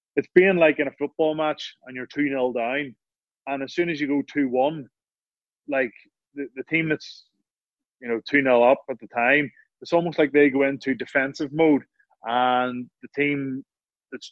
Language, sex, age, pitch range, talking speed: English, male, 20-39, 125-145 Hz, 190 wpm